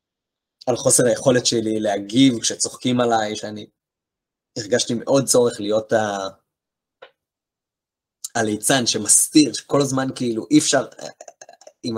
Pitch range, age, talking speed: 100-135 Hz, 20-39, 105 wpm